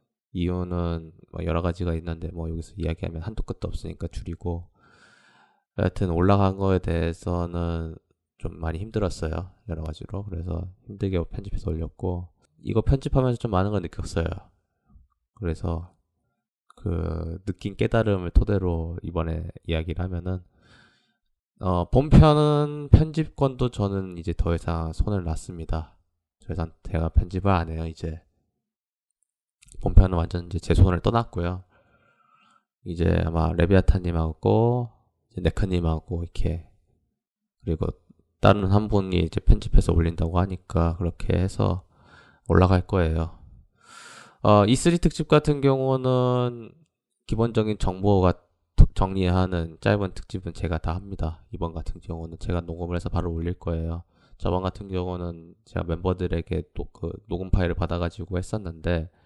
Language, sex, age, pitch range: Korean, male, 20-39, 85-100 Hz